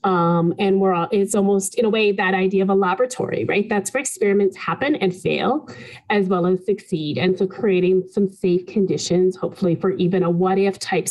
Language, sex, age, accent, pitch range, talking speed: English, female, 30-49, American, 180-215 Hz, 200 wpm